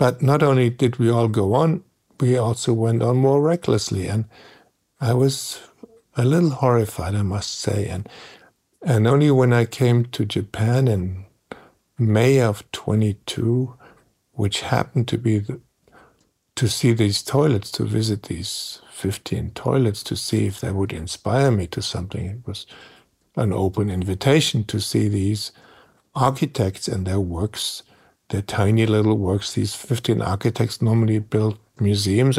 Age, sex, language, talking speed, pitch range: 60-79, male, English, 150 wpm, 105-125 Hz